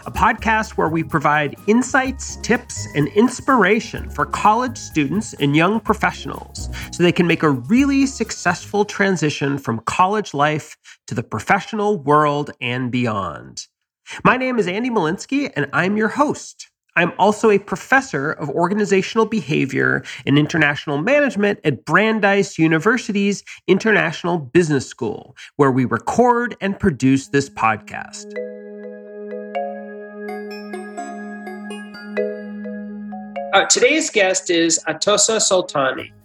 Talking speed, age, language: 115 wpm, 30-49, English